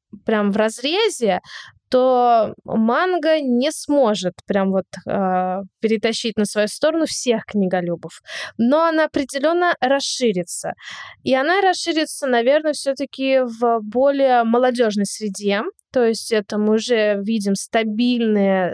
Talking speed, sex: 115 wpm, female